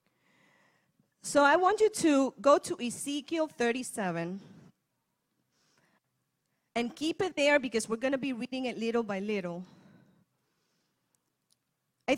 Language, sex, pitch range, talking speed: English, female, 200-280 Hz, 120 wpm